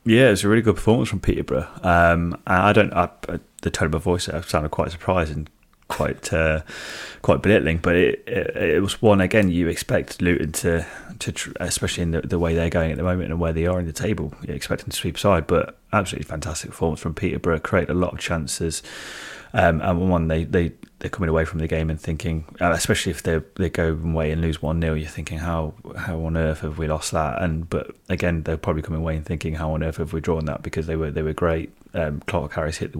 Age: 30-49